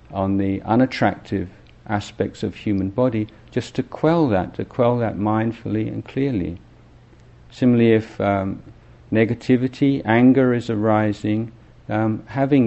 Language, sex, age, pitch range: Thai, male, 50-69, 100-125 Hz